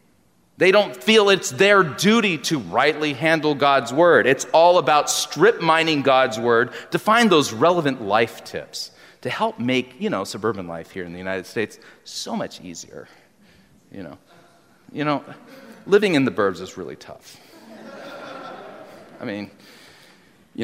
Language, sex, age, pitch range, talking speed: English, male, 30-49, 100-170 Hz, 150 wpm